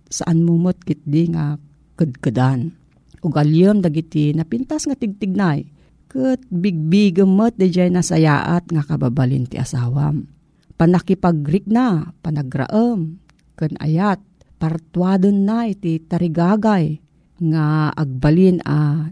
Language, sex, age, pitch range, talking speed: Filipino, female, 40-59, 155-210 Hz, 105 wpm